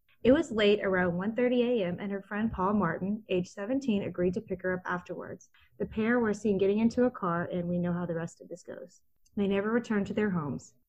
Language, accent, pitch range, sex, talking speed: English, American, 180-220 Hz, female, 230 wpm